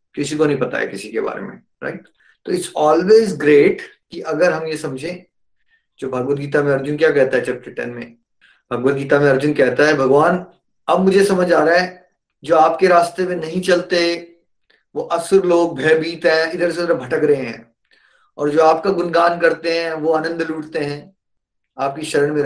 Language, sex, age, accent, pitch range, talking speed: Hindi, male, 30-49, native, 135-180 Hz, 195 wpm